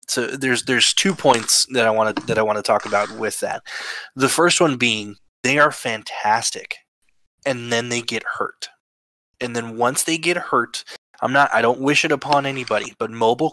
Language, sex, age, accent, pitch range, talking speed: English, male, 20-39, American, 110-140 Hz, 180 wpm